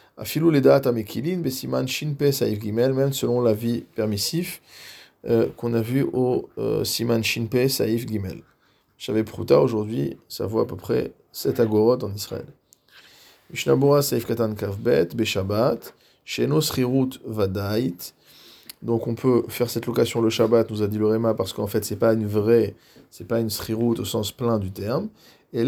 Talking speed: 150 wpm